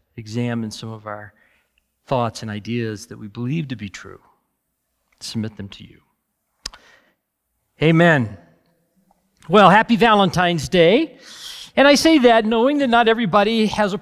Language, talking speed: English, 135 wpm